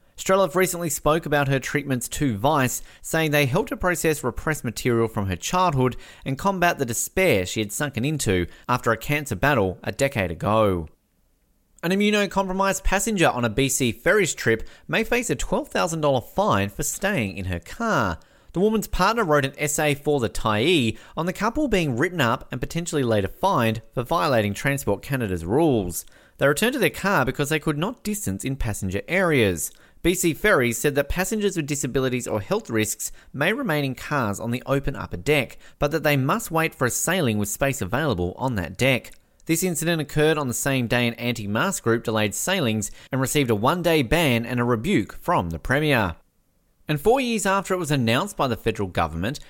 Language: English